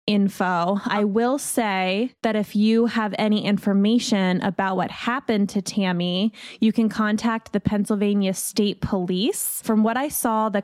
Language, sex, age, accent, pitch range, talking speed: English, female, 20-39, American, 190-225 Hz, 150 wpm